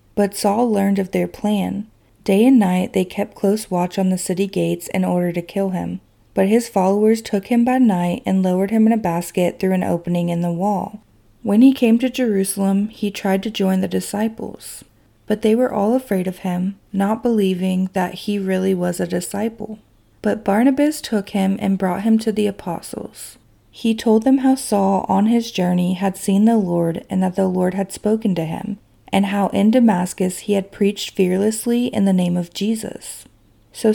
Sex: female